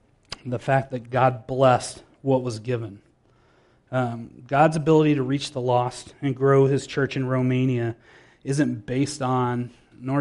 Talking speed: 145 wpm